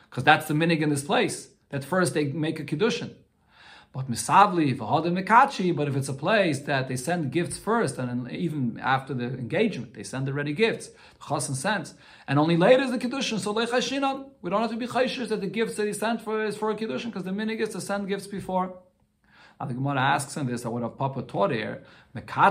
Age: 40-59